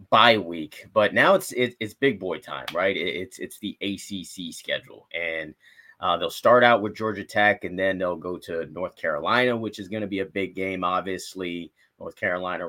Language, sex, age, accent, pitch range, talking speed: English, male, 30-49, American, 95-120 Hz, 205 wpm